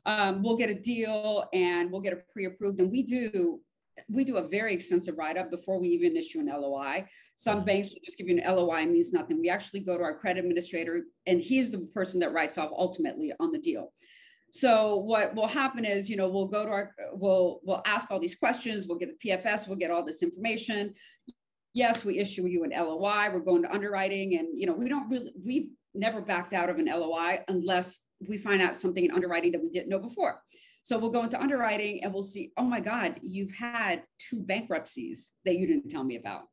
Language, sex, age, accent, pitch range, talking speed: English, female, 40-59, American, 180-250 Hz, 225 wpm